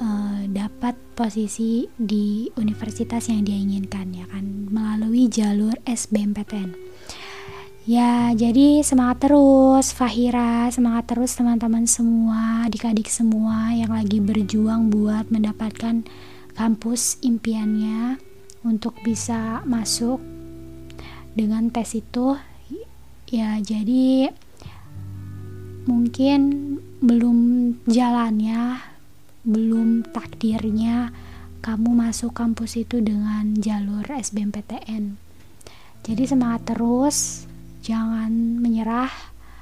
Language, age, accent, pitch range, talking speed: Indonesian, 20-39, native, 210-240 Hz, 85 wpm